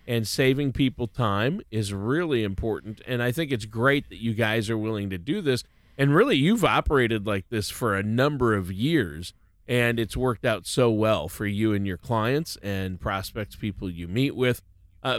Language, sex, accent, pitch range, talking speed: English, male, American, 105-135 Hz, 195 wpm